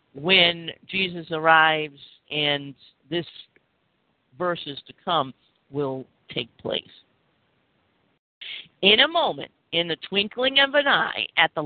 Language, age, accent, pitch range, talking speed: English, 50-69, American, 150-205 Hz, 115 wpm